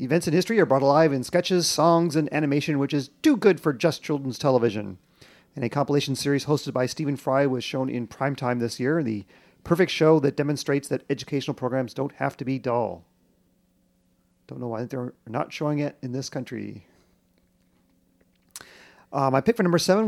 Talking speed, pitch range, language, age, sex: 185 wpm, 125-155 Hz, English, 40-59, male